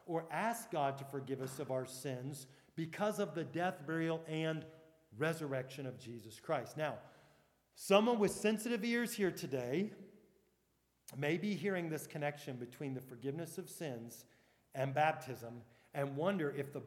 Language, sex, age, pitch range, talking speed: English, male, 40-59, 130-160 Hz, 150 wpm